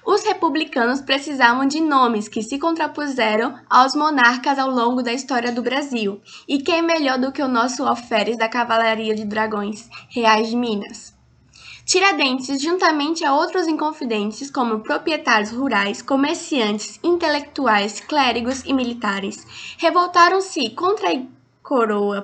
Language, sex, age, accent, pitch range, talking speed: Portuguese, female, 10-29, Brazilian, 230-295 Hz, 130 wpm